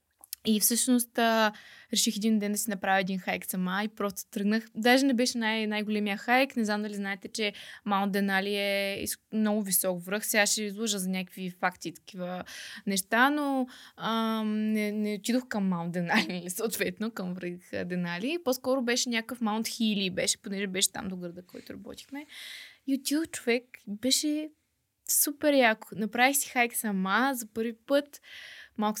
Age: 20-39